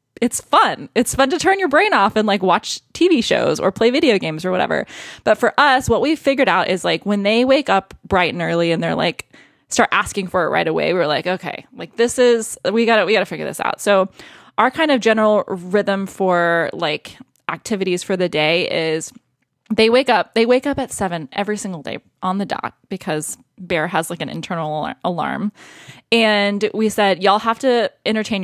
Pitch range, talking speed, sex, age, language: 185-235 Hz, 215 wpm, female, 20-39, English